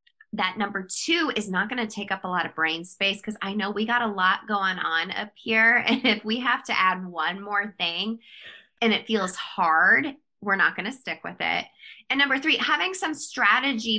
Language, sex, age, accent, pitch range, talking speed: English, female, 20-39, American, 185-235 Hz, 220 wpm